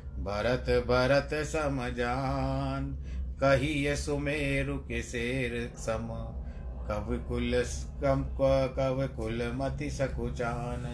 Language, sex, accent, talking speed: Hindi, male, native, 55 wpm